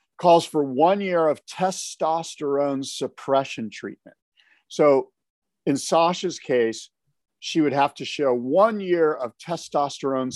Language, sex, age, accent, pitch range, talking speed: English, male, 50-69, American, 125-165 Hz, 120 wpm